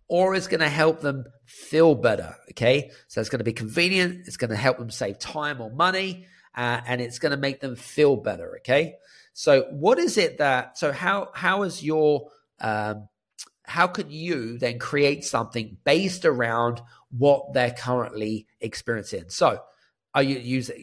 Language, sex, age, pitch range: English, male, 40-59, 115-155 Hz